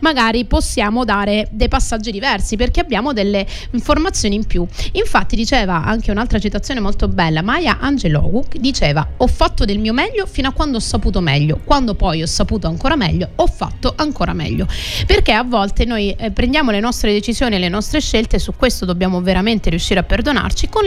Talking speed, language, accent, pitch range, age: 185 wpm, Italian, native, 200-250 Hz, 30-49